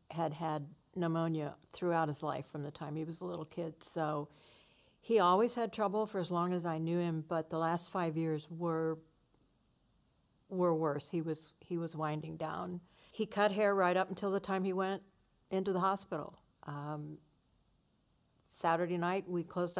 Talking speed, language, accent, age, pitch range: 175 wpm, English, American, 60-79, 160-180 Hz